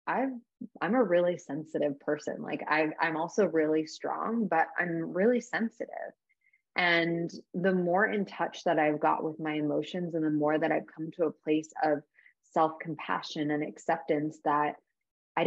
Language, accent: English, American